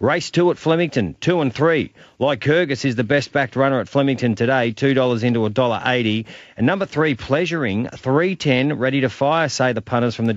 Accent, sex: Australian, male